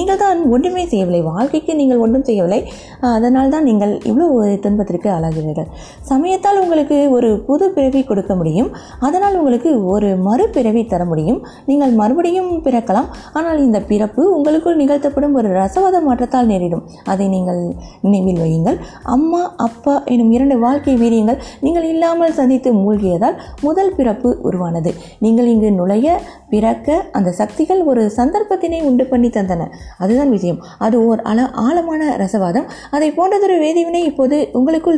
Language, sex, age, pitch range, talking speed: Tamil, female, 20-39, 210-315 Hz, 135 wpm